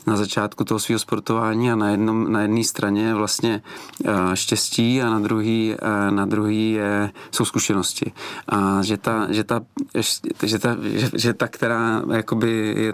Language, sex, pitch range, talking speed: Czech, male, 105-115 Hz, 145 wpm